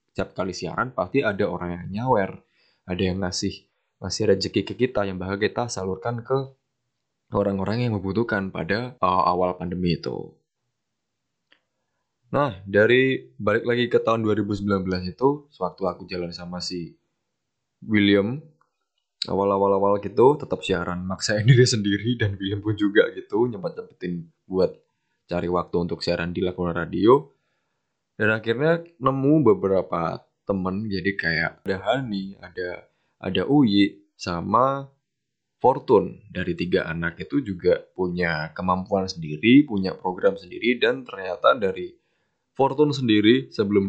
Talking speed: 130 wpm